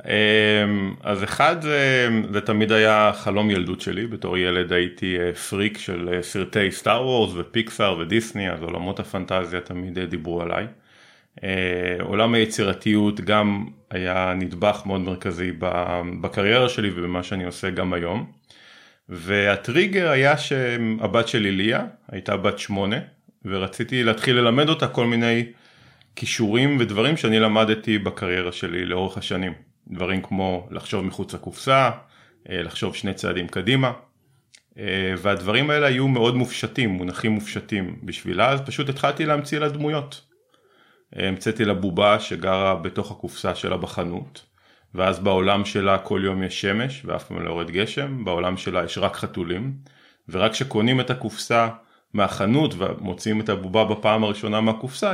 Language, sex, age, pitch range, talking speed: Hebrew, male, 30-49, 95-115 Hz, 130 wpm